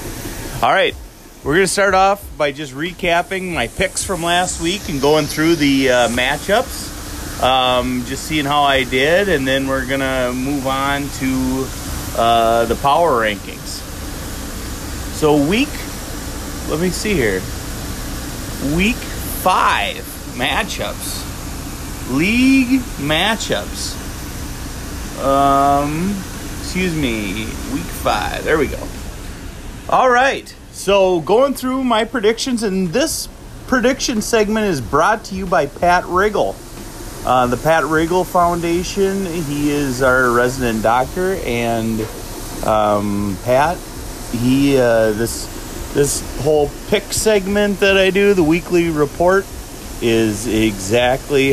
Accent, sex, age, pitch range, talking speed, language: American, male, 30-49, 120-190 Hz, 120 wpm, English